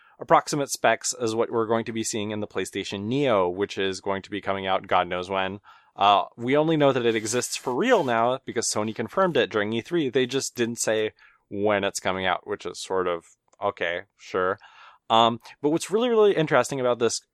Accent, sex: American, male